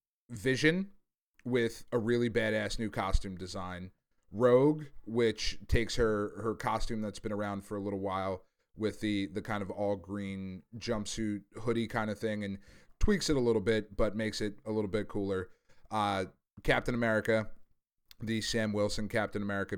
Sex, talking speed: male, 160 wpm